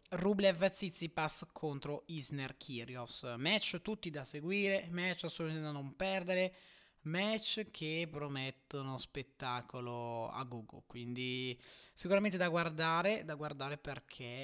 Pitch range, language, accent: 130-190 Hz, Italian, native